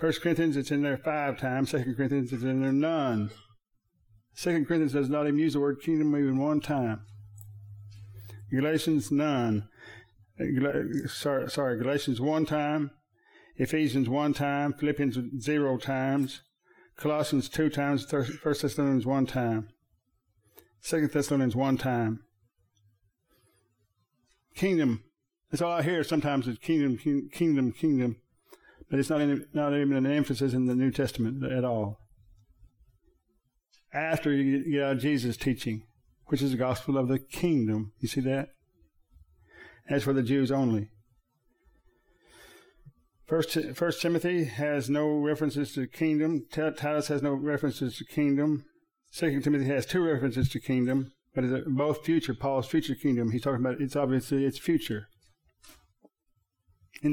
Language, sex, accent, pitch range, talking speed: English, male, American, 120-150 Hz, 140 wpm